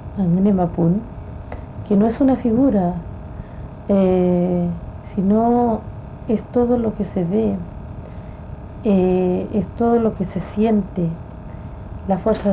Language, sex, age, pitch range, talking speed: Spanish, female, 40-59, 170-205 Hz, 110 wpm